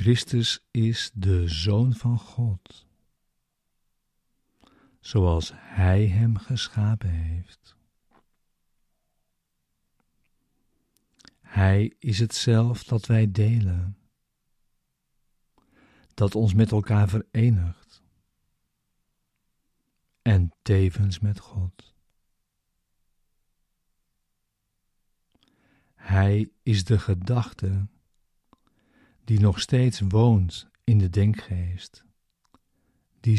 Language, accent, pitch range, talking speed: Dutch, Dutch, 95-115 Hz, 70 wpm